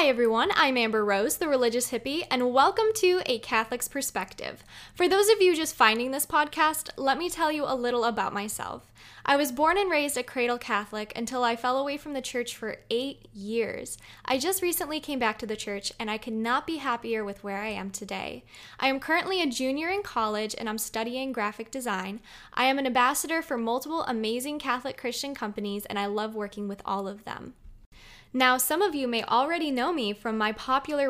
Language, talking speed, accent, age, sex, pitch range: English, 210 wpm, American, 10-29, female, 220-280 Hz